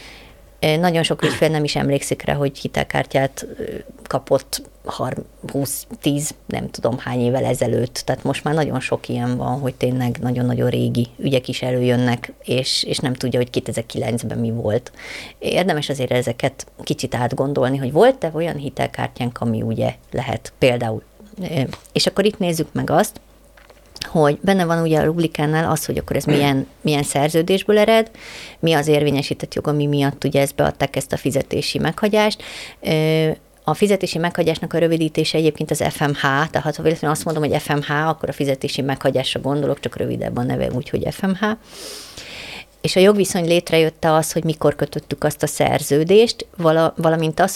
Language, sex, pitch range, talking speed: Hungarian, female, 135-160 Hz, 155 wpm